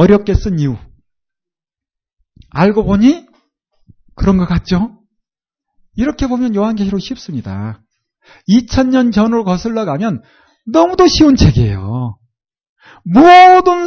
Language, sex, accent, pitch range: Korean, male, native, 140-235 Hz